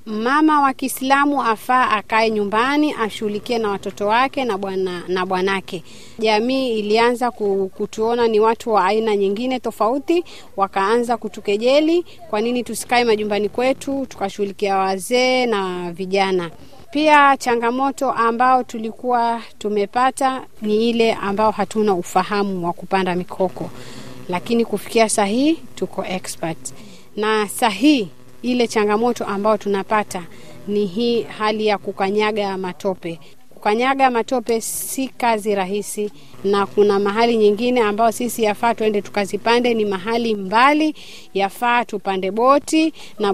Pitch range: 200-250 Hz